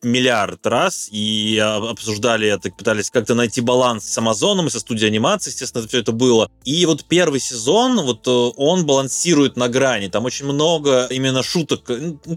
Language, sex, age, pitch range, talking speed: Russian, male, 20-39, 110-130 Hz, 170 wpm